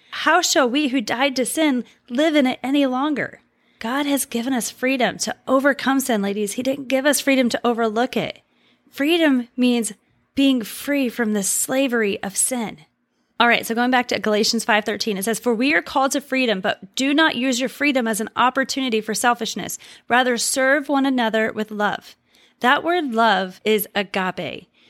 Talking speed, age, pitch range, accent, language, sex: 185 wpm, 30-49, 225-270 Hz, American, English, female